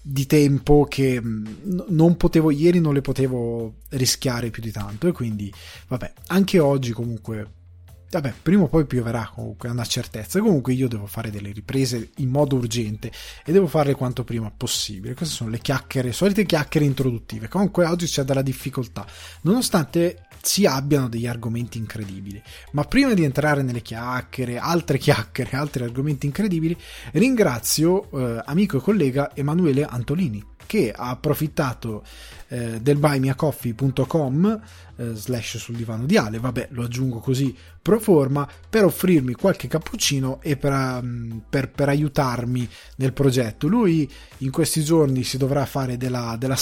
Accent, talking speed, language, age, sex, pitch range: native, 155 wpm, Italian, 20-39, male, 120-155 Hz